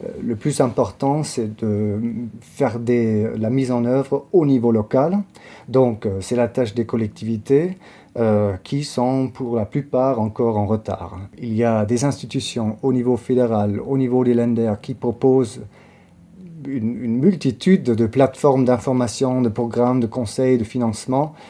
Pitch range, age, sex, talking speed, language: 110-130 Hz, 30-49, male, 155 wpm, French